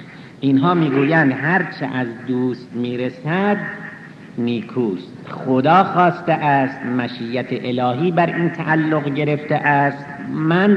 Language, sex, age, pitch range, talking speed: Persian, male, 60-79, 130-170 Hz, 100 wpm